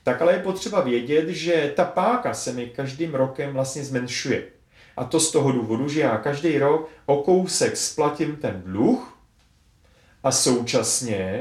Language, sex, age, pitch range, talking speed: Czech, male, 30-49, 120-160 Hz, 160 wpm